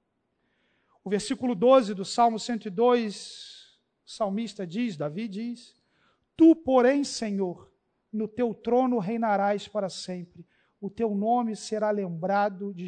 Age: 50-69